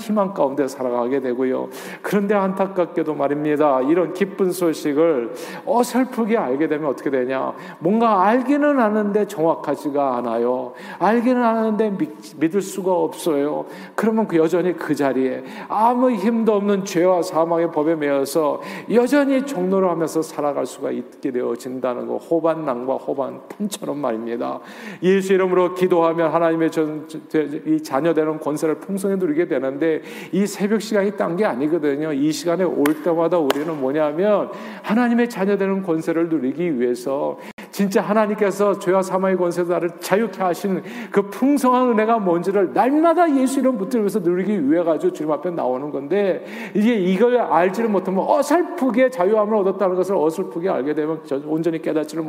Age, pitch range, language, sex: 40-59, 155-205 Hz, Korean, male